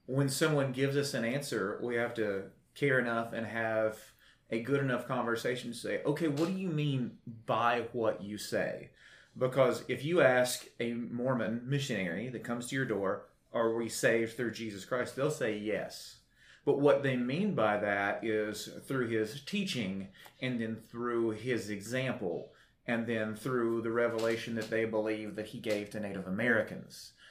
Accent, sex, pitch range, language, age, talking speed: American, male, 110-125 Hz, English, 30-49, 170 wpm